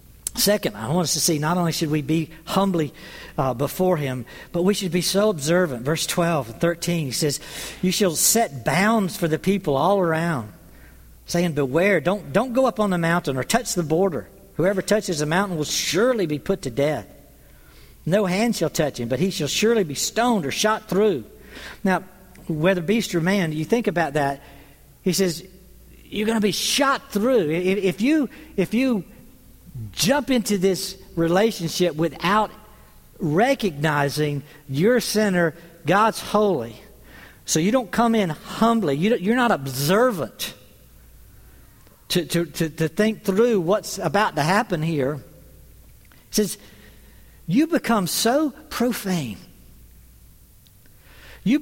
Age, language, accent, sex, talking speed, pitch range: 60-79, English, American, male, 155 wpm, 150-215 Hz